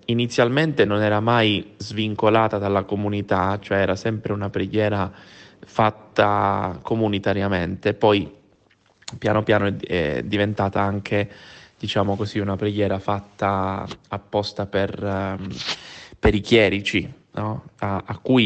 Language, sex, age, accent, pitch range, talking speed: Italian, male, 20-39, native, 100-110 Hz, 110 wpm